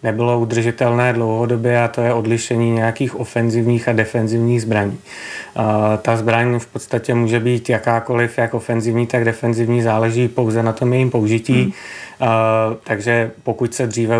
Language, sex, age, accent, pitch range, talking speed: Czech, male, 30-49, native, 110-120 Hz, 150 wpm